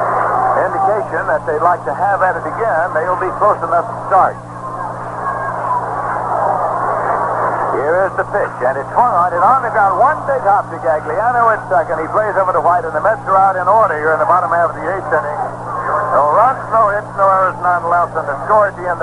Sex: male